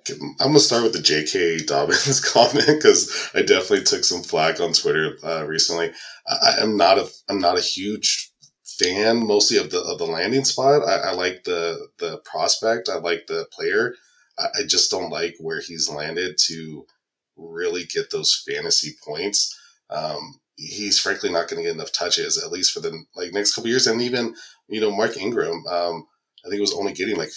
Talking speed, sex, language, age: 200 wpm, male, English, 20-39